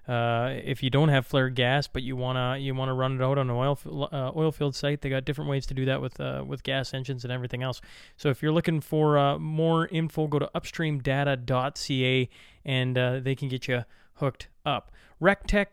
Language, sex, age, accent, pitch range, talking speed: English, male, 20-39, American, 135-155 Hz, 225 wpm